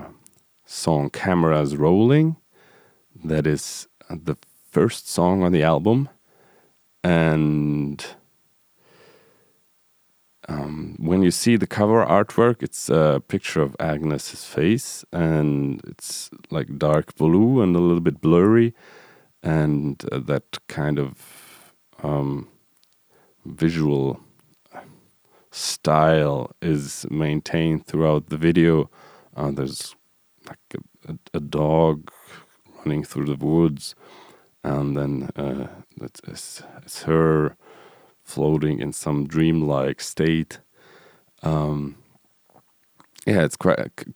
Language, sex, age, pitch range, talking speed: English, male, 40-59, 75-85 Hz, 95 wpm